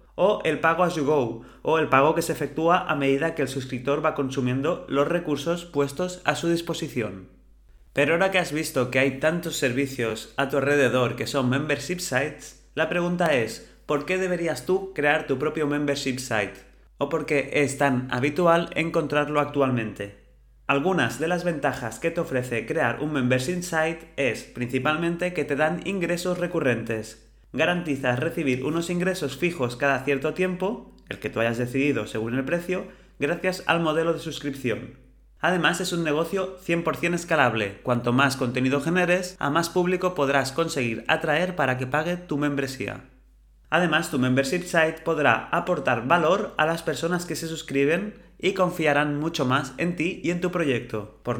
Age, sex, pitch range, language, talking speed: 30-49, male, 130-170 Hz, Spanish, 170 wpm